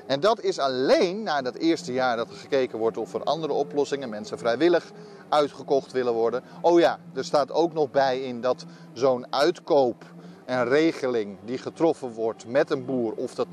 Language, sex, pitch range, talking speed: Dutch, male, 120-160 Hz, 185 wpm